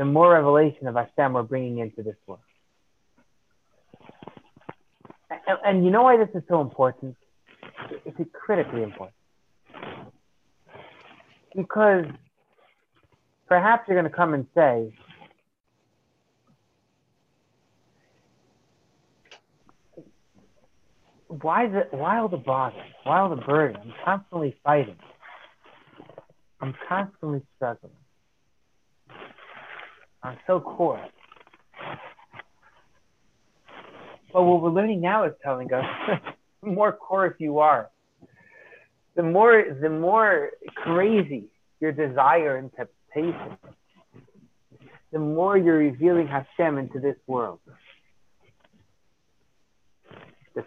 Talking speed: 95 wpm